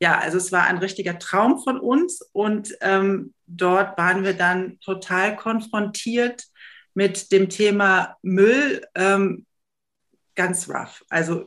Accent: German